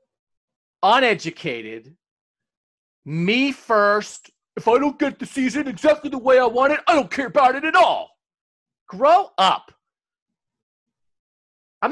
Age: 40-59